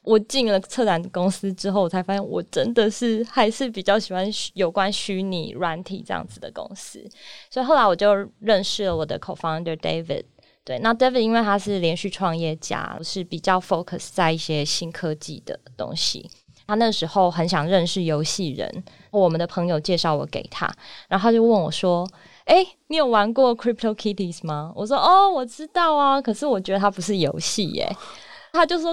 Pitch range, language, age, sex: 165-220 Hz, Chinese, 20-39, female